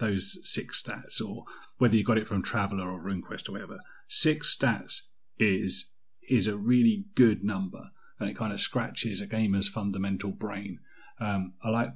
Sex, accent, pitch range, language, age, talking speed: male, British, 105-140 Hz, English, 40-59, 170 wpm